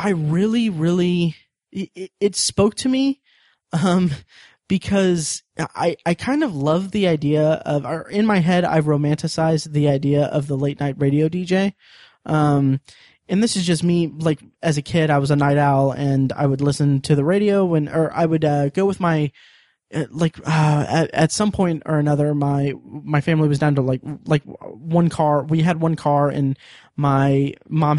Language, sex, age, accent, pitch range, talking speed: English, male, 20-39, American, 145-185 Hz, 190 wpm